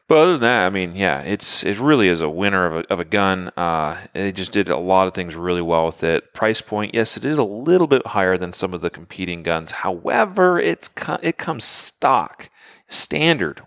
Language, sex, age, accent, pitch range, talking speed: English, male, 30-49, American, 90-115 Hz, 230 wpm